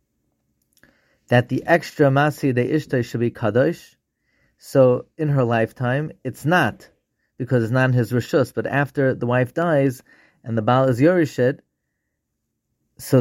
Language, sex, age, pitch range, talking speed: English, male, 30-49, 115-140 Hz, 145 wpm